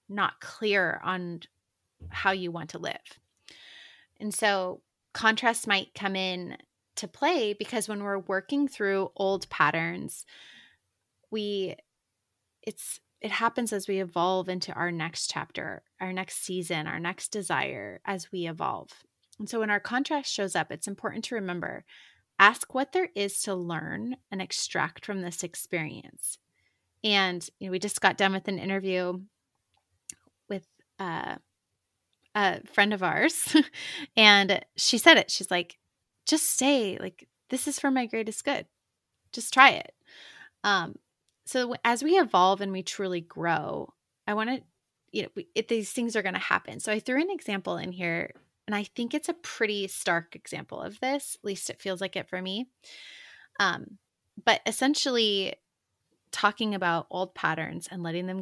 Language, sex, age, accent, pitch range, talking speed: English, female, 30-49, American, 180-225 Hz, 160 wpm